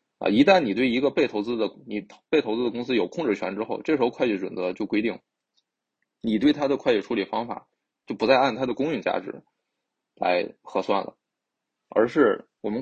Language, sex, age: Chinese, male, 20-39